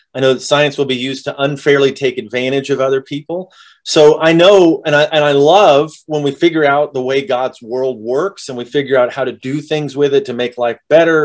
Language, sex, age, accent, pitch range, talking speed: English, male, 30-49, American, 125-150 Hz, 240 wpm